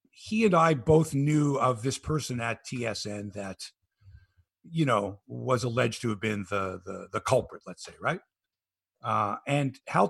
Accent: American